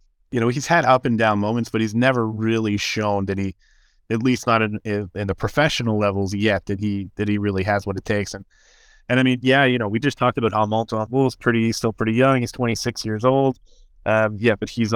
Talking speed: 245 wpm